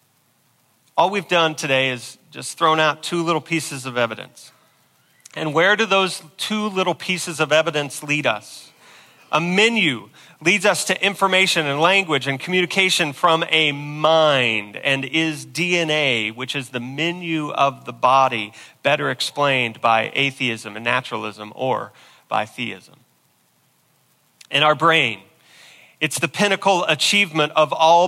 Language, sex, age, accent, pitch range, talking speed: English, male, 40-59, American, 135-170 Hz, 140 wpm